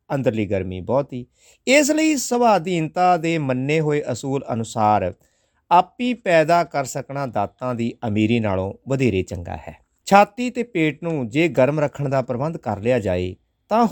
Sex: male